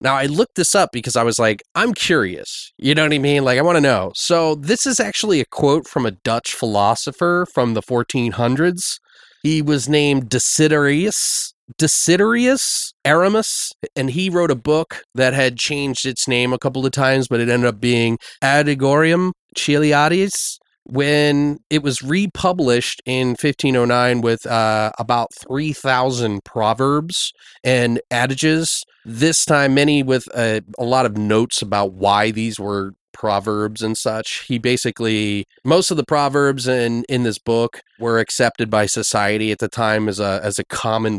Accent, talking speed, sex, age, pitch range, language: American, 165 wpm, male, 30-49, 110-145 Hz, English